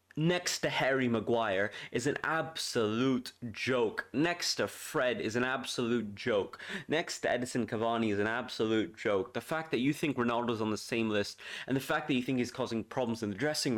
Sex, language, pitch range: male, English, 105-130 Hz